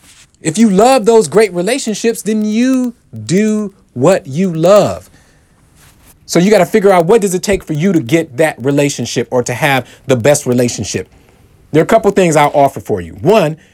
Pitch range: 145-205 Hz